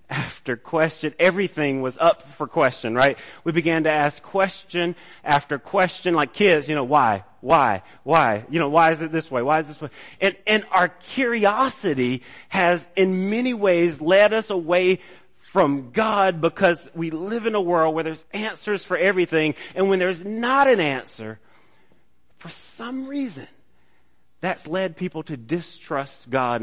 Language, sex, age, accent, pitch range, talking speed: English, male, 30-49, American, 145-190 Hz, 160 wpm